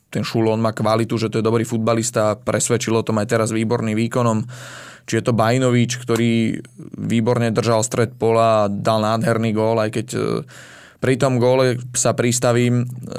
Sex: male